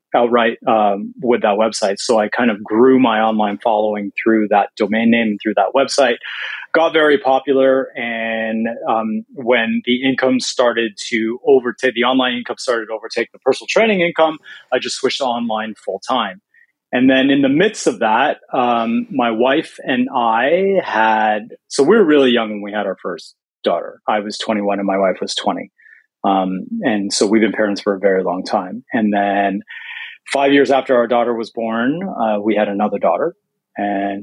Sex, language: male, English